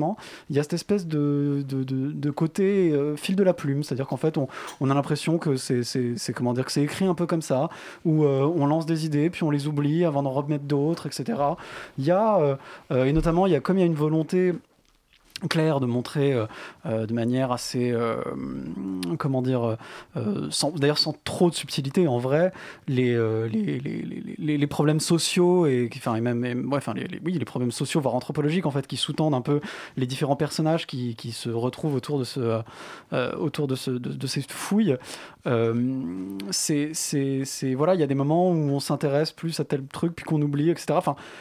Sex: male